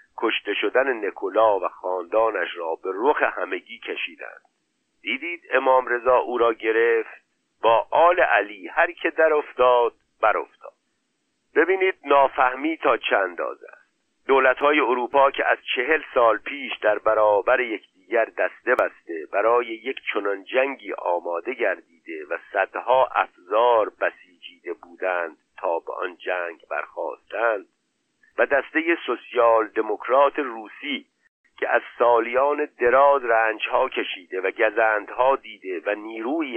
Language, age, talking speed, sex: Persian, 50-69, 125 wpm, male